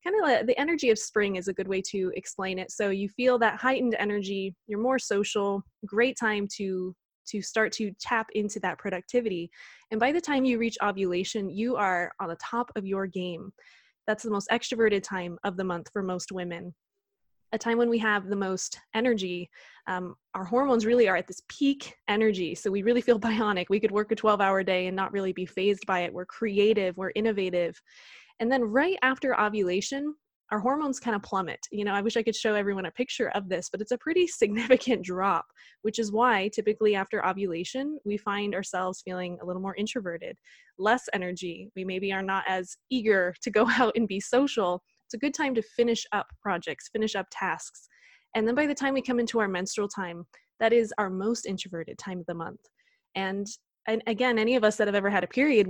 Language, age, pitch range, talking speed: English, 20-39, 190-235 Hz, 210 wpm